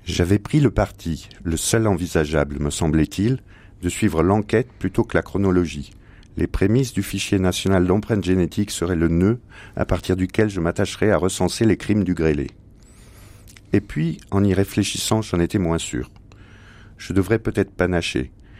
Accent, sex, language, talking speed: French, male, French, 160 wpm